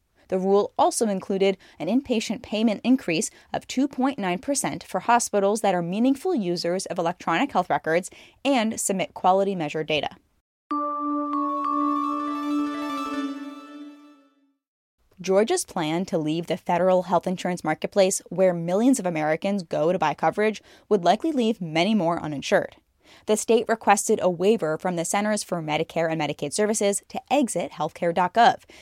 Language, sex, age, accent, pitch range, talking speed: English, female, 10-29, American, 180-240 Hz, 135 wpm